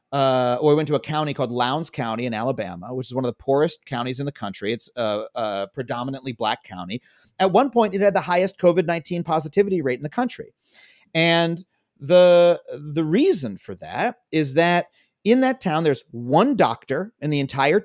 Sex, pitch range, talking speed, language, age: male, 135-175 Hz, 195 wpm, English, 30-49